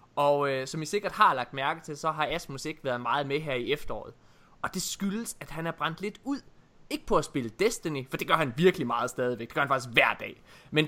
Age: 20-39